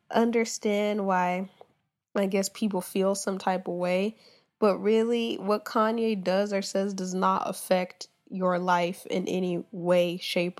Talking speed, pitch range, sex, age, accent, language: 145 wpm, 185-220 Hz, female, 10-29, American, English